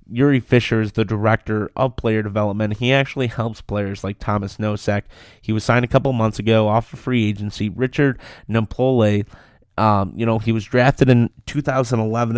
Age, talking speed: 30-49, 185 wpm